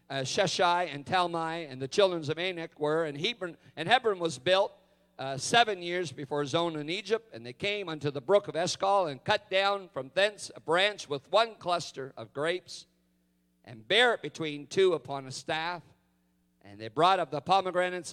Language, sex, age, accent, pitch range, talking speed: English, male, 50-69, American, 130-180 Hz, 190 wpm